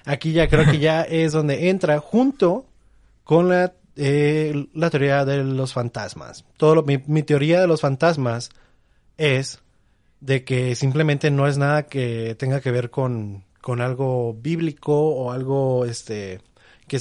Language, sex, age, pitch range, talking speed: Spanish, male, 20-39, 120-155 Hz, 155 wpm